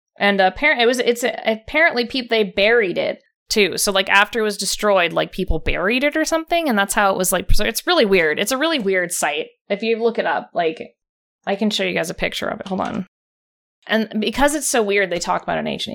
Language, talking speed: English, 245 wpm